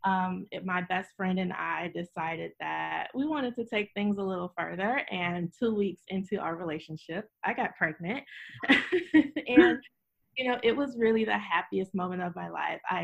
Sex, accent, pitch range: female, American, 180-240 Hz